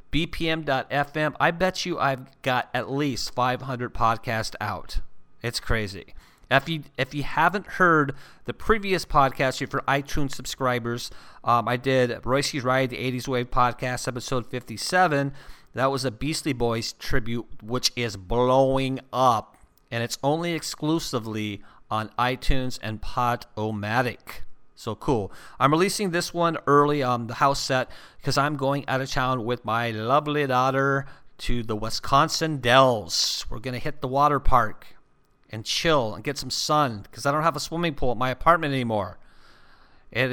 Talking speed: 155 wpm